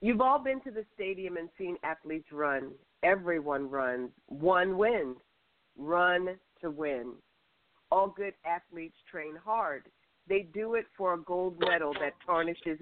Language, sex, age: English, female, 50-69